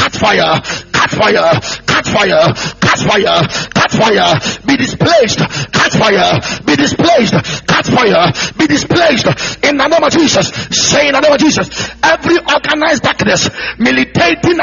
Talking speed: 145 wpm